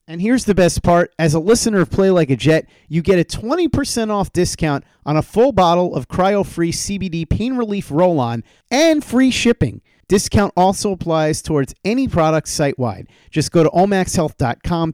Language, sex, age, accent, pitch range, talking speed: English, male, 40-59, American, 140-200 Hz, 175 wpm